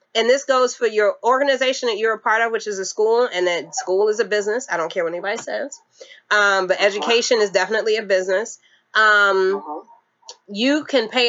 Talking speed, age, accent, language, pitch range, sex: 200 wpm, 30-49, American, English, 200-260 Hz, female